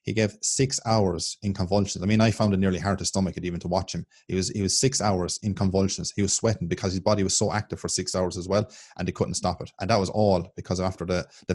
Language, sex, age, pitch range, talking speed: English, male, 20-39, 95-110 Hz, 285 wpm